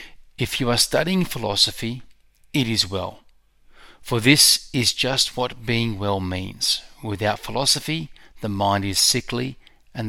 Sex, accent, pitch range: male, Australian, 100-120 Hz